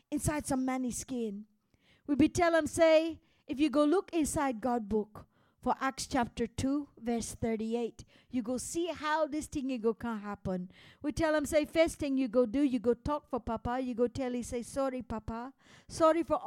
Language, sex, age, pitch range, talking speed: English, female, 50-69, 280-375 Hz, 195 wpm